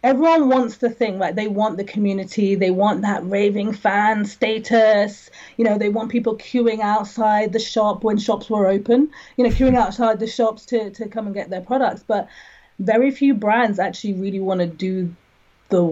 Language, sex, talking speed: English, female, 190 wpm